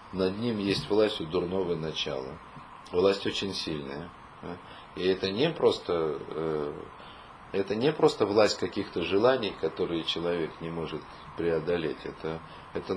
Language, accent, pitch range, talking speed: Russian, native, 85-120 Hz, 130 wpm